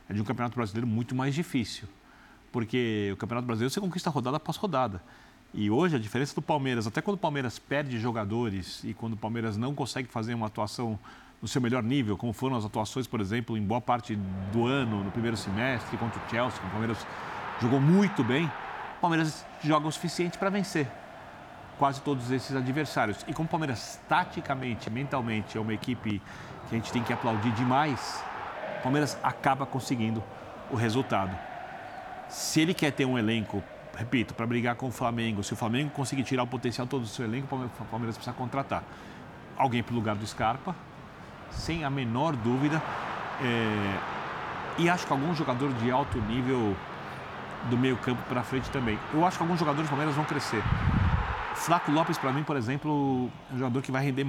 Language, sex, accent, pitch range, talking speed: Portuguese, male, Brazilian, 115-145 Hz, 190 wpm